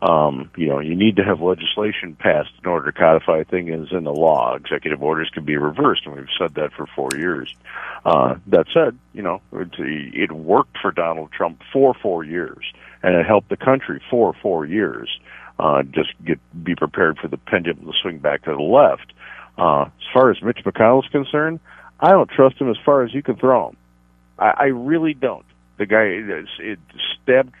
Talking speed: 200 wpm